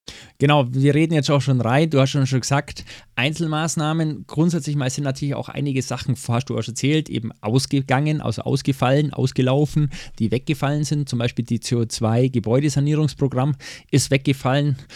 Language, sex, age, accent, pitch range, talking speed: German, male, 20-39, German, 120-145 Hz, 160 wpm